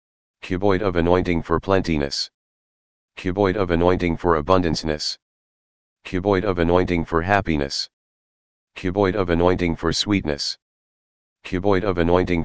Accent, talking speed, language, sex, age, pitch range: American, 110 wpm, English, male, 40-59, 80-95 Hz